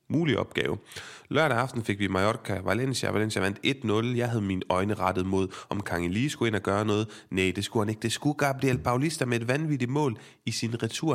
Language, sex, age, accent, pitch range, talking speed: Danish, male, 30-49, native, 100-125 Hz, 220 wpm